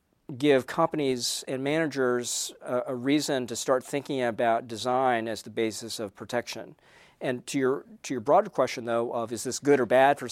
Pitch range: 115-140 Hz